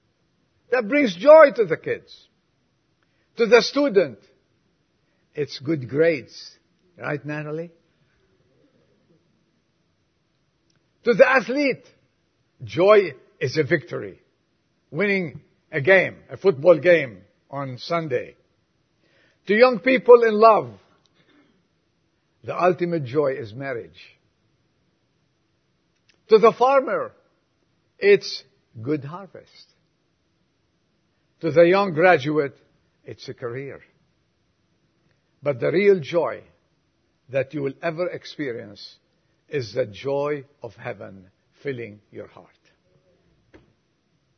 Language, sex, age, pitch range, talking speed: English, male, 50-69, 140-210 Hz, 95 wpm